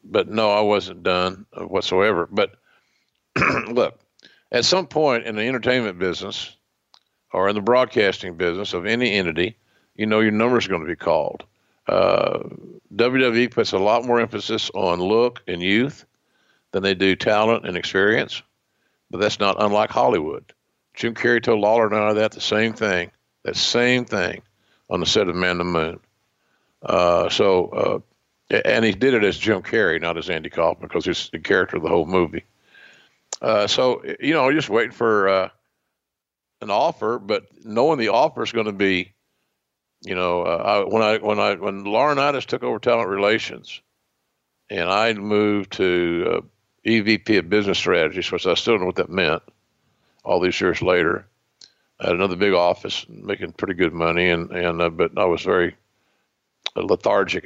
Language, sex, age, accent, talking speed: English, male, 50-69, American, 175 wpm